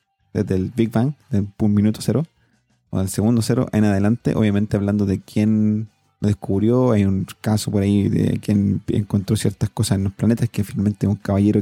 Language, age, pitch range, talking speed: Spanish, 30-49, 105-120 Hz, 185 wpm